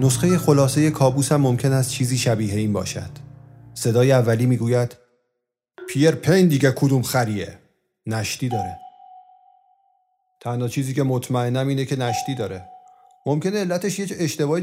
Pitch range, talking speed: 115-150 Hz, 125 wpm